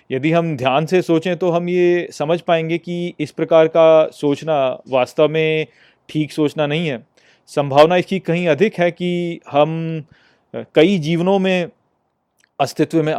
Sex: male